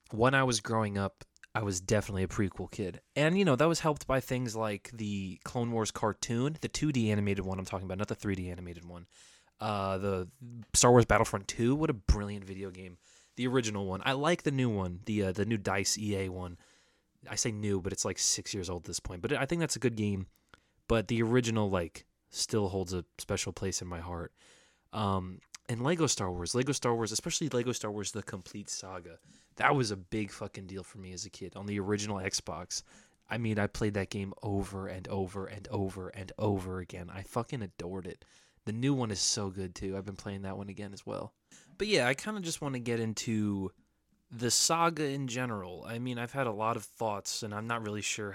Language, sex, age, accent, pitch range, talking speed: English, male, 20-39, American, 95-120 Hz, 225 wpm